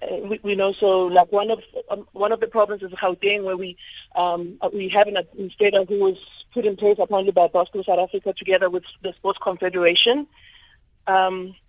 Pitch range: 185-220 Hz